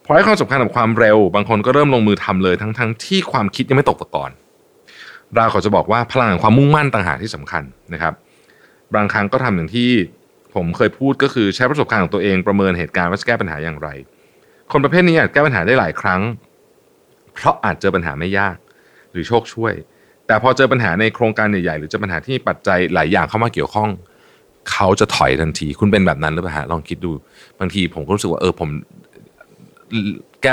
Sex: male